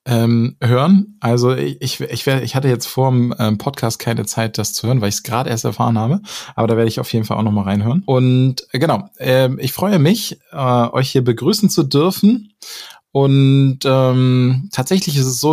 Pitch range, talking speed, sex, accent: 115-135 Hz, 205 wpm, male, German